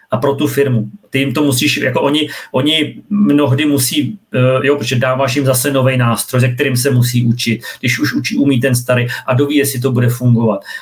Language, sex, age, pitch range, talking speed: Czech, male, 40-59, 130-140 Hz, 205 wpm